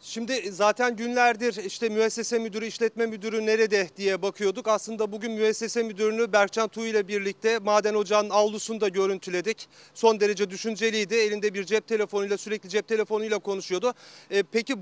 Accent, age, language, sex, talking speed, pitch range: native, 40-59, Turkish, male, 145 wpm, 205-230 Hz